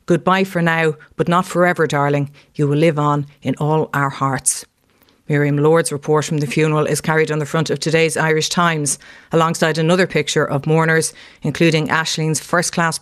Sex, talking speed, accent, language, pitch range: female, 175 wpm, Irish, English, 145-165 Hz